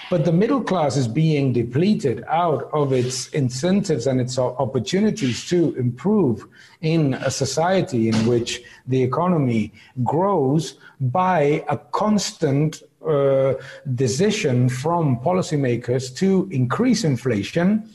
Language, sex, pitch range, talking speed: English, male, 125-175 Hz, 115 wpm